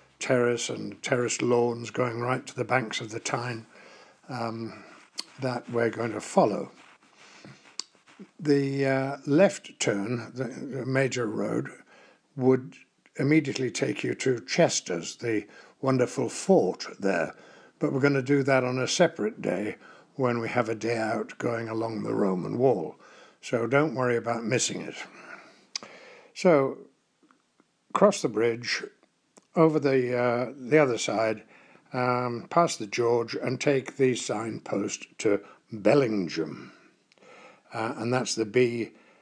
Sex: male